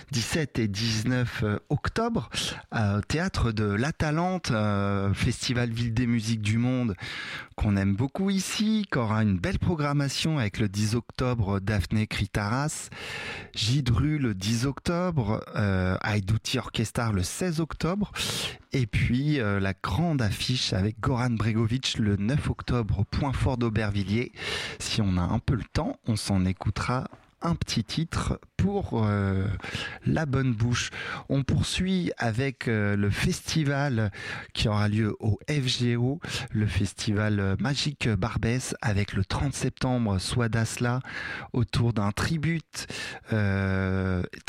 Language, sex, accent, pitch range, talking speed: French, male, French, 105-130 Hz, 130 wpm